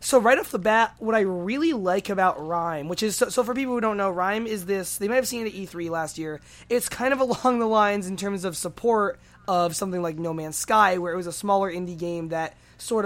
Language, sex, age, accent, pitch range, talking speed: English, male, 20-39, American, 155-210 Hz, 260 wpm